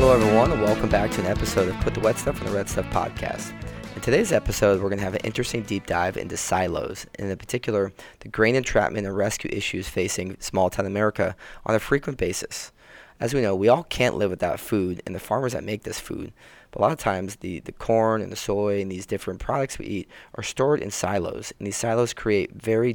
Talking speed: 235 wpm